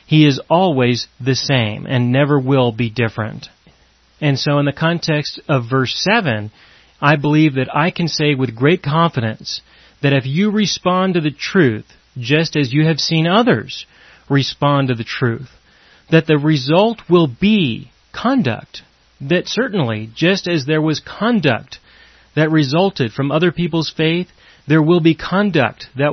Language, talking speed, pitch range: English, 155 wpm, 130-170 Hz